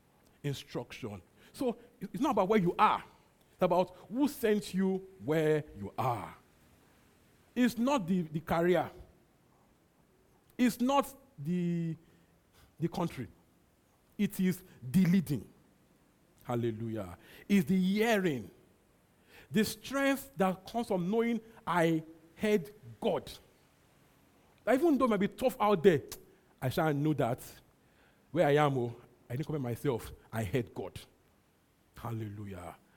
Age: 50-69